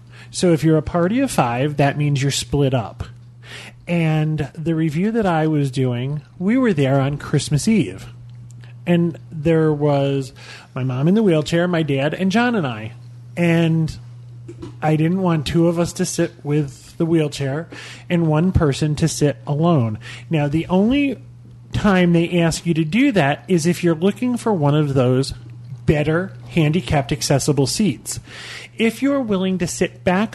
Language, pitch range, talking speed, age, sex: English, 125-175 Hz, 170 wpm, 30-49, male